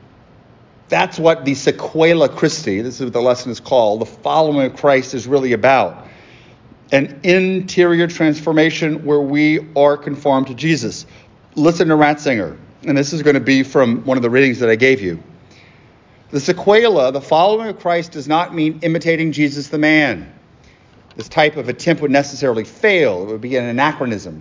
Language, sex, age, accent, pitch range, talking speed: English, male, 40-59, American, 130-170 Hz, 175 wpm